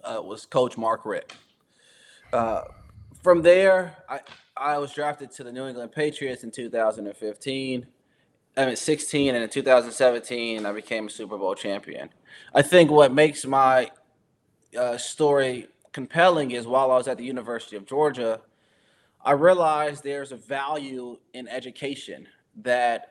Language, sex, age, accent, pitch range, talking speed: English, male, 20-39, American, 125-155 Hz, 145 wpm